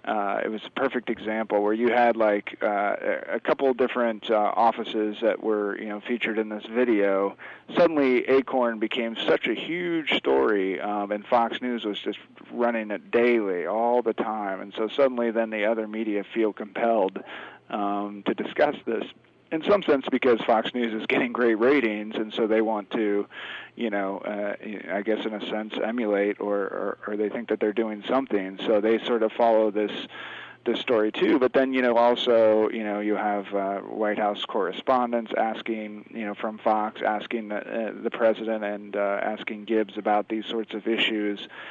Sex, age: male, 40-59